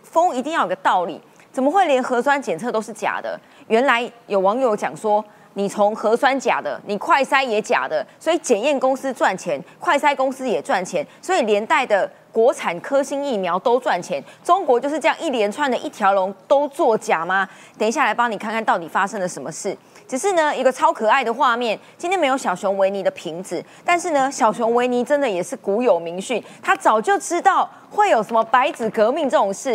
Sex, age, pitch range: female, 20-39, 195-280 Hz